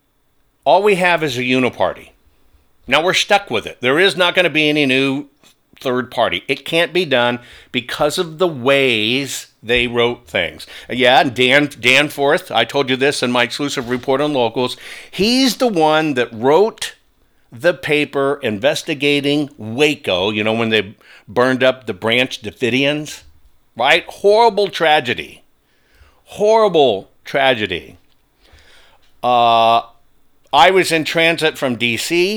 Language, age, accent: English, 50-69, American